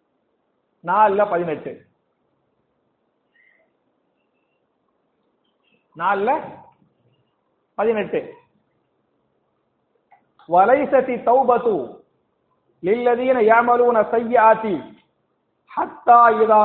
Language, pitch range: English, 215-275 Hz